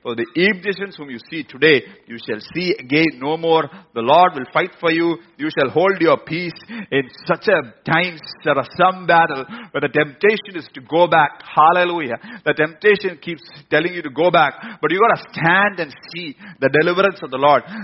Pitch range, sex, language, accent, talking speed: 135-190 Hz, male, English, Indian, 195 wpm